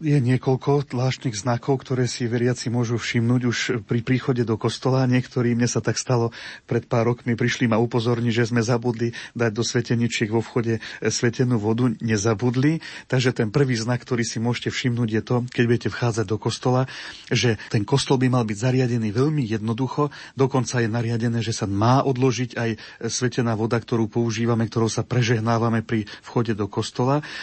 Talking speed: 170 wpm